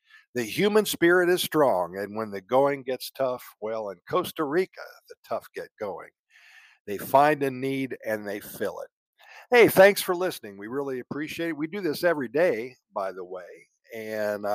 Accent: American